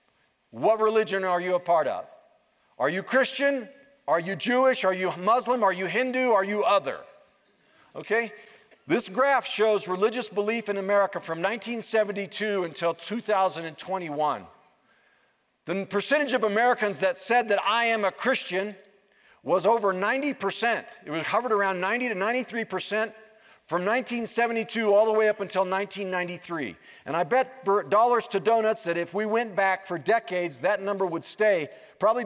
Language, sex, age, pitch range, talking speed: English, male, 40-59, 190-230 Hz, 155 wpm